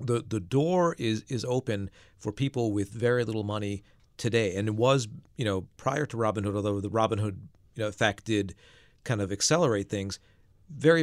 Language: English